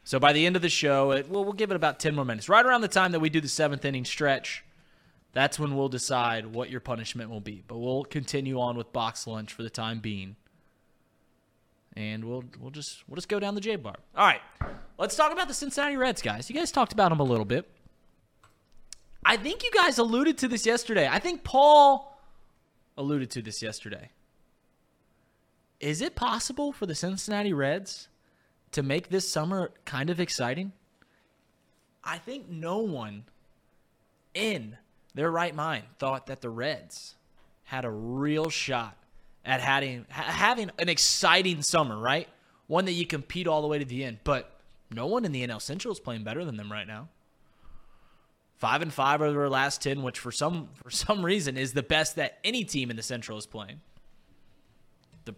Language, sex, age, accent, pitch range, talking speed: English, male, 20-39, American, 125-190 Hz, 185 wpm